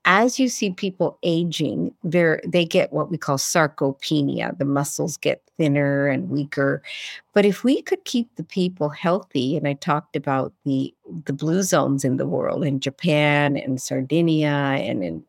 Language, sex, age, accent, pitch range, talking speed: English, female, 50-69, American, 145-195 Hz, 170 wpm